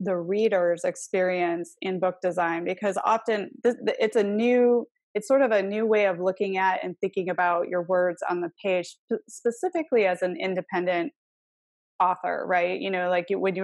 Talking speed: 165 wpm